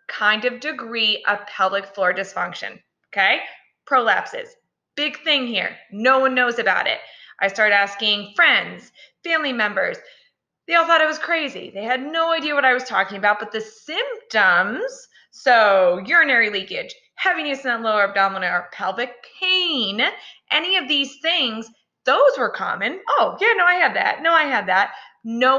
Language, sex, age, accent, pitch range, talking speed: English, female, 20-39, American, 210-300 Hz, 160 wpm